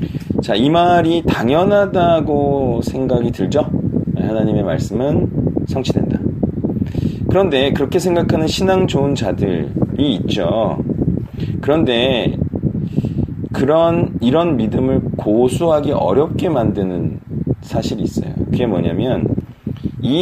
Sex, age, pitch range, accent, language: male, 40-59, 130-185 Hz, native, Korean